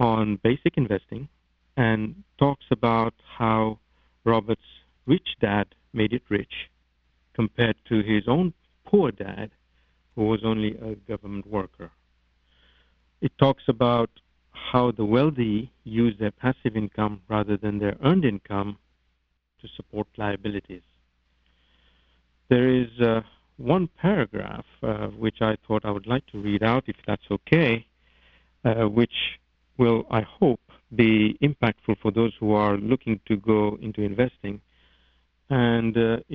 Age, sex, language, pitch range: 50-69, male, English, 90-120 Hz